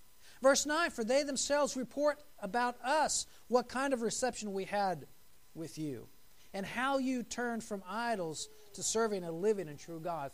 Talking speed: 170 wpm